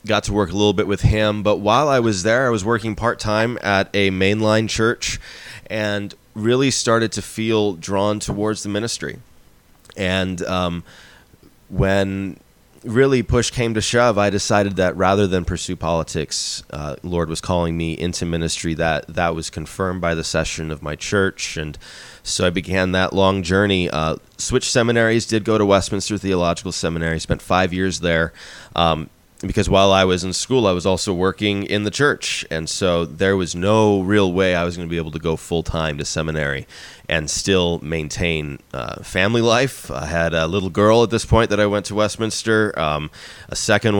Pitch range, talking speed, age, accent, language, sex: 85-105 Hz, 185 wpm, 20-39, American, English, male